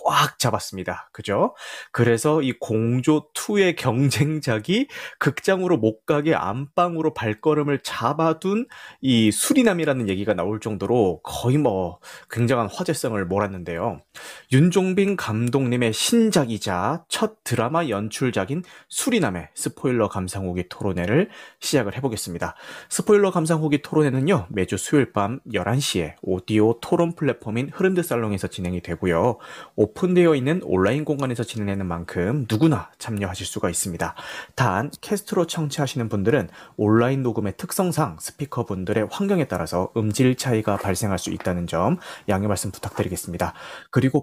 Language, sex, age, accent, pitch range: Korean, male, 30-49, native, 105-155 Hz